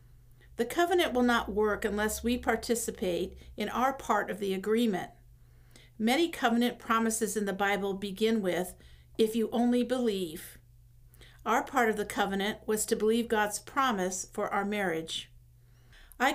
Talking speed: 145 wpm